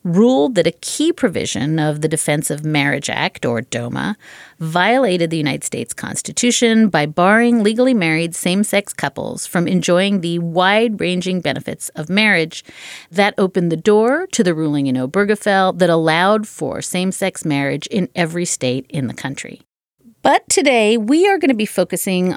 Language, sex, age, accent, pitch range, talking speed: English, female, 40-59, American, 155-220 Hz, 160 wpm